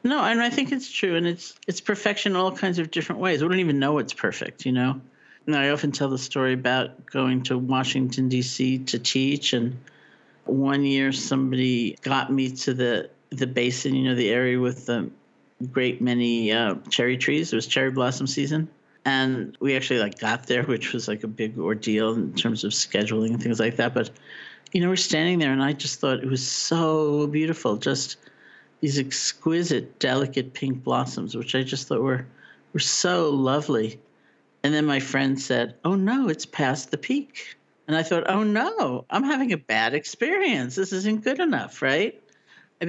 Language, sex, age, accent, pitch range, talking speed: English, male, 50-69, American, 125-170 Hz, 195 wpm